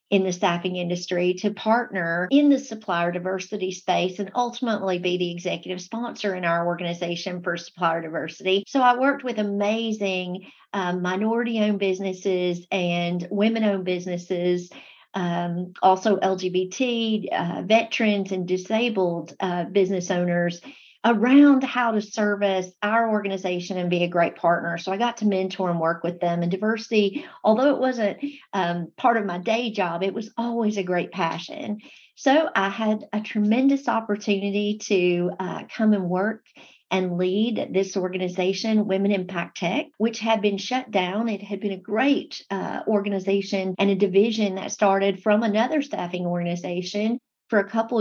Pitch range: 180-225 Hz